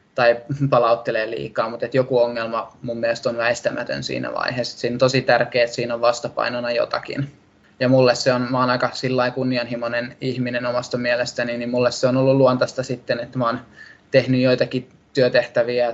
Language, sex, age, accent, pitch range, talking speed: Finnish, male, 20-39, native, 120-130 Hz, 175 wpm